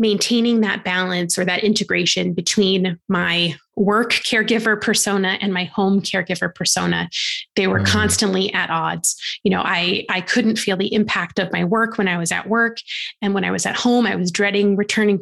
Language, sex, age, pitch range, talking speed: English, female, 20-39, 180-220 Hz, 185 wpm